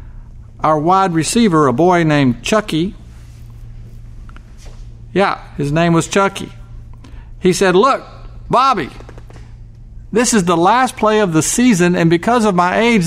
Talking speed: 135 wpm